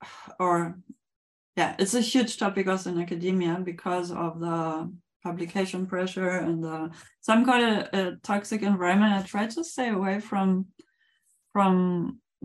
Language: English